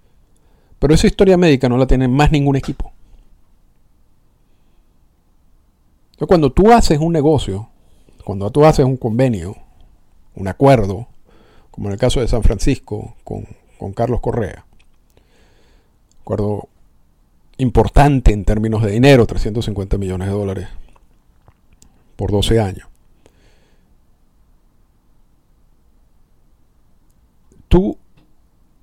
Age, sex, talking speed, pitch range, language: 50-69, male, 100 wpm, 100-145 Hz, Spanish